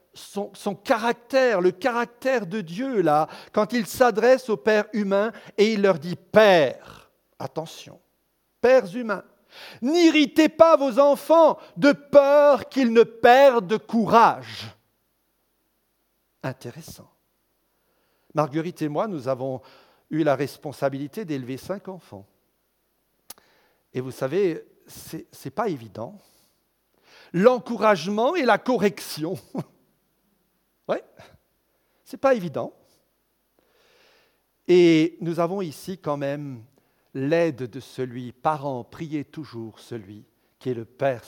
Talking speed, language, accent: 115 wpm, French, French